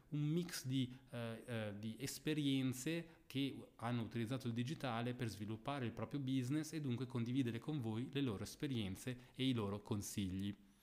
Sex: male